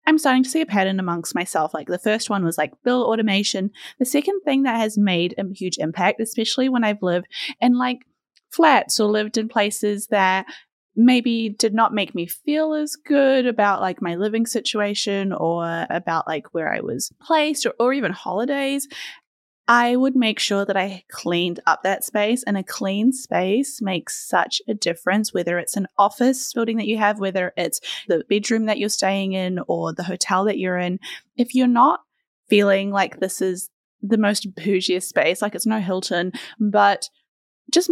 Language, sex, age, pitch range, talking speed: English, female, 20-39, 190-245 Hz, 185 wpm